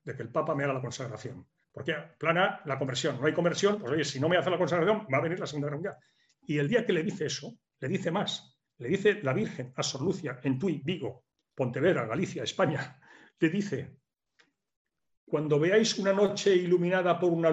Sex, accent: male, Spanish